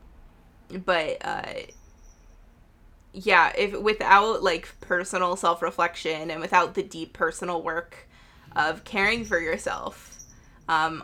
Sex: female